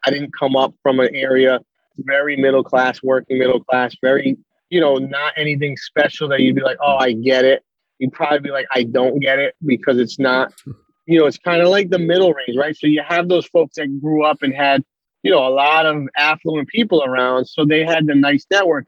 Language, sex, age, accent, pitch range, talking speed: English, male, 30-49, American, 135-165 Hz, 225 wpm